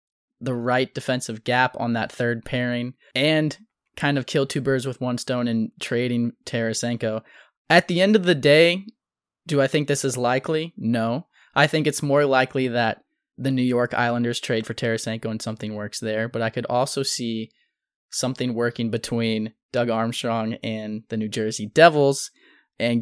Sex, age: male, 20-39